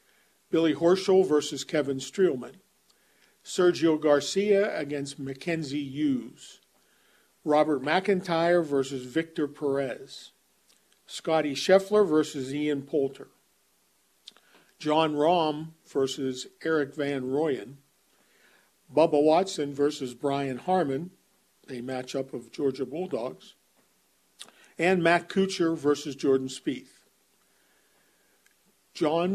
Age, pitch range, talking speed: 50-69, 135-165 Hz, 90 wpm